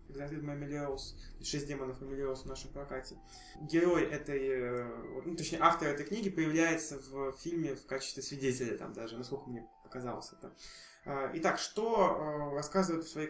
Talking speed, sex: 135 wpm, male